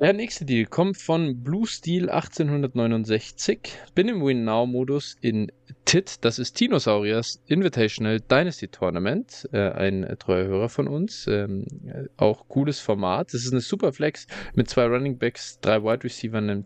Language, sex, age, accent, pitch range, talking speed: German, male, 20-39, German, 110-145 Hz, 150 wpm